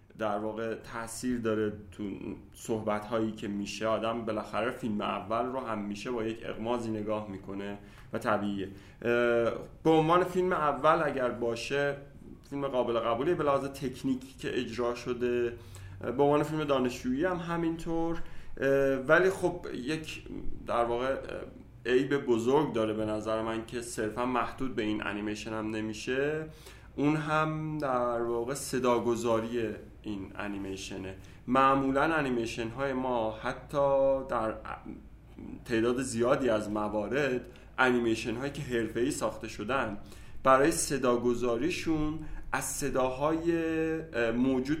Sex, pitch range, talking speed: male, 110-135 Hz, 120 wpm